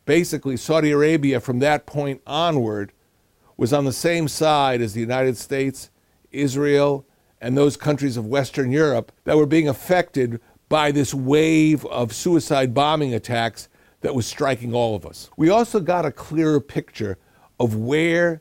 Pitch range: 120-150 Hz